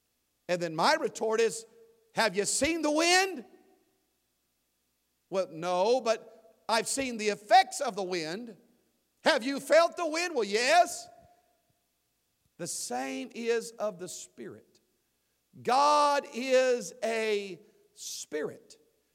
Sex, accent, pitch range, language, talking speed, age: male, American, 195-275 Hz, English, 115 wpm, 50-69